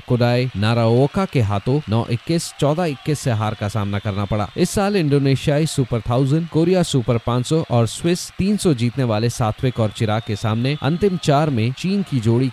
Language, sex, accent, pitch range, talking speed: Hindi, male, native, 115-150 Hz, 175 wpm